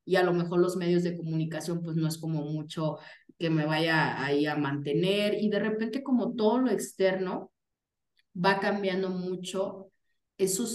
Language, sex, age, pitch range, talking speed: Spanish, female, 30-49, 160-205 Hz, 170 wpm